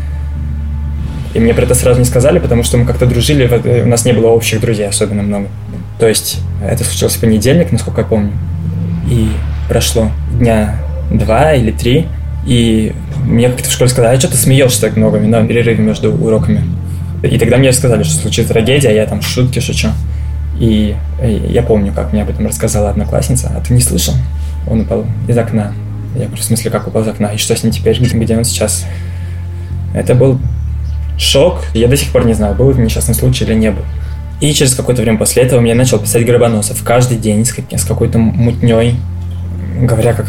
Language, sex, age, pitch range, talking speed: Russian, male, 20-39, 85-120 Hz, 190 wpm